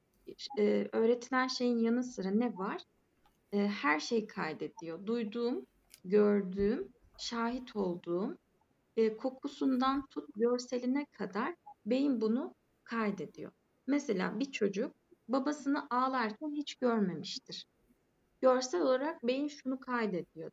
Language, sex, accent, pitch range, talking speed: Turkish, female, native, 205-280 Hz, 100 wpm